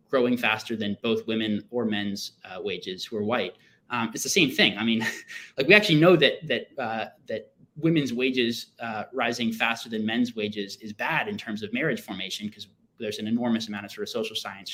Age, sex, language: 20-39, male, English